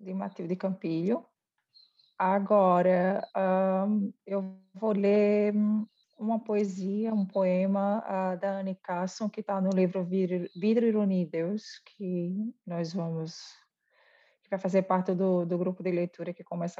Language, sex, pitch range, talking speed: Portuguese, female, 185-215 Hz, 130 wpm